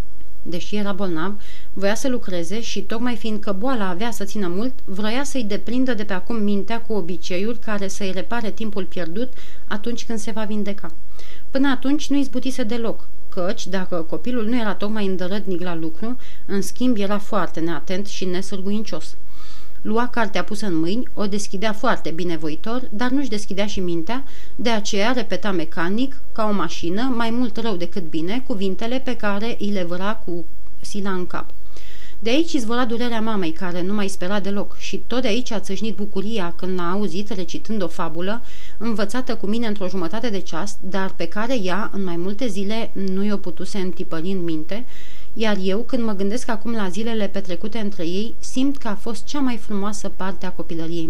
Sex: female